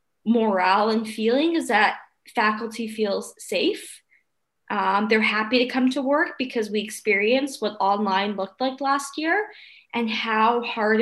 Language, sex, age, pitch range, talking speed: English, female, 20-39, 200-240 Hz, 145 wpm